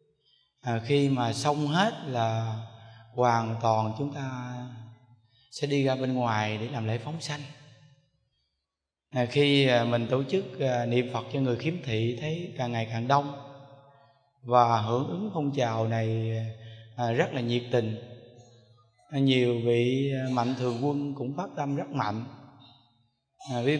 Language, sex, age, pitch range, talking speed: Vietnamese, male, 20-39, 115-140 Hz, 140 wpm